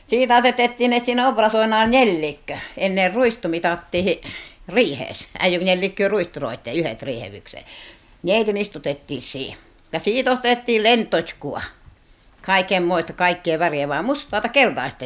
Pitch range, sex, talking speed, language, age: 180-245 Hz, female, 110 wpm, Finnish, 60-79